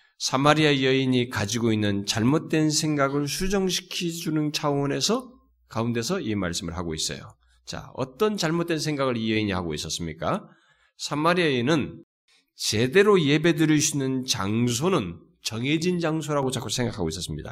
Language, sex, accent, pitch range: Korean, male, native, 110-180 Hz